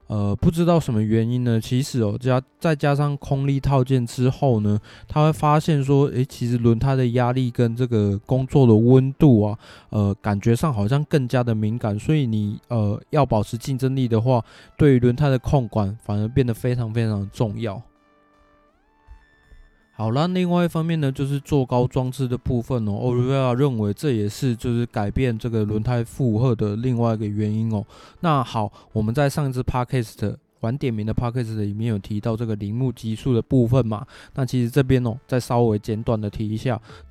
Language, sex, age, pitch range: Chinese, male, 20-39, 110-135 Hz